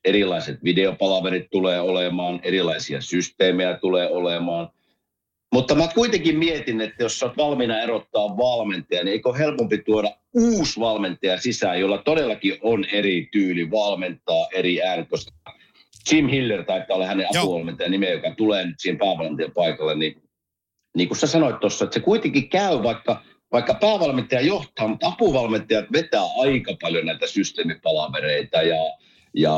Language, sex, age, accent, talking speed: Finnish, male, 50-69, native, 140 wpm